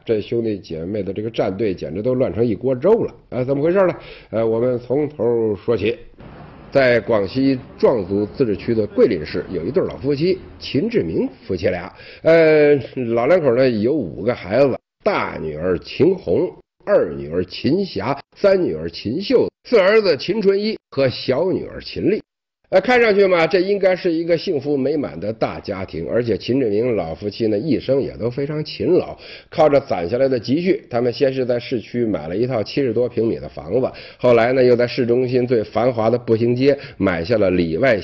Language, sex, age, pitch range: Chinese, male, 50-69, 120-185 Hz